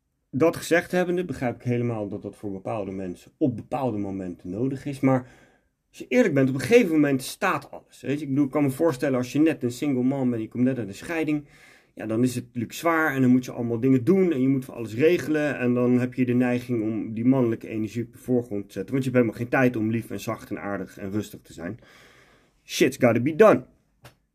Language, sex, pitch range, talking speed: Dutch, male, 110-145 Hz, 240 wpm